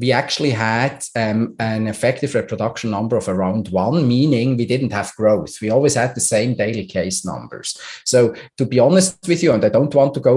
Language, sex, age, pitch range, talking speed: English, male, 30-49, 105-125 Hz, 210 wpm